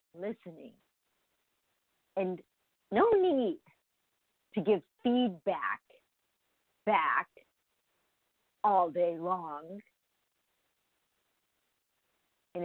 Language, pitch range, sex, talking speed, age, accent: English, 160-220 Hz, female, 55 wpm, 50-69, American